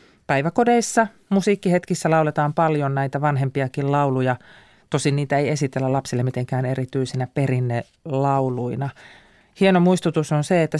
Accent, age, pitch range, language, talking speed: native, 40-59, 135-175 Hz, Finnish, 115 wpm